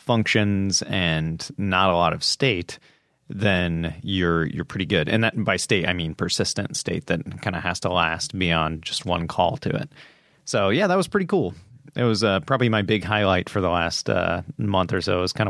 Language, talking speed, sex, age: English, 215 wpm, male, 30-49